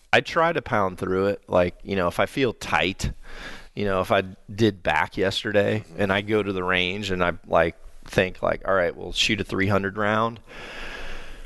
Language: English